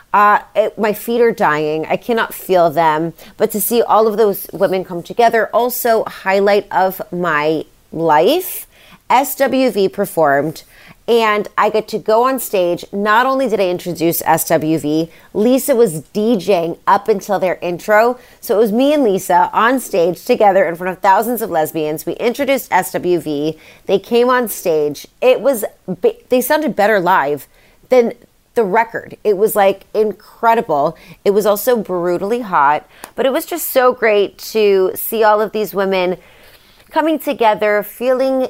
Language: English